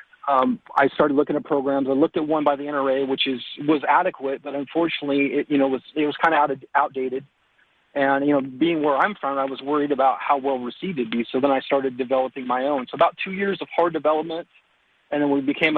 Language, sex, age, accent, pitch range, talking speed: English, male, 40-59, American, 135-155 Hz, 240 wpm